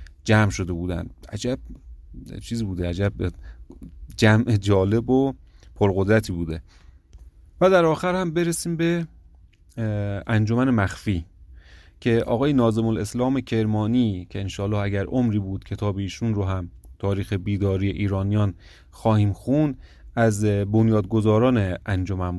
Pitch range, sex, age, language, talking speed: 95-115 Hz, male, 30-49, Persian, 110 wpm